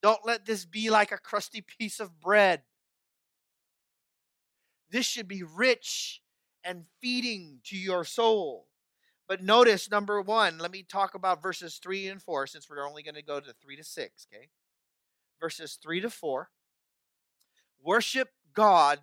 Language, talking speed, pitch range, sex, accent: English, 150 wpm, 165-215 Hz, male, American